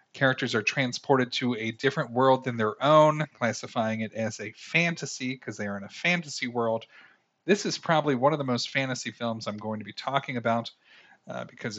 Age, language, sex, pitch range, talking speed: 40-59, English, male, 115-145 Hz, 200 wpm